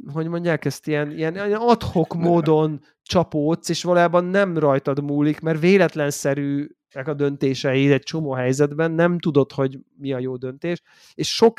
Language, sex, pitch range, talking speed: Hungarian, male, 140-170 Hz, 150 wpm